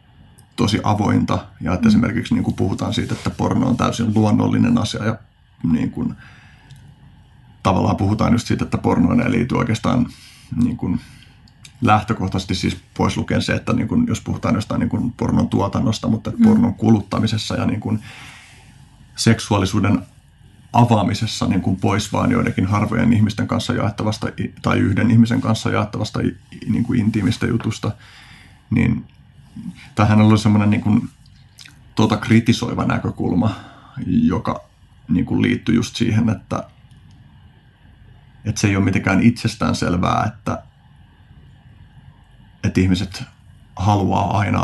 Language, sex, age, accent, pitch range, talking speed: Finnish, male, 30-49, native, 105-120 Hz, 130 wpm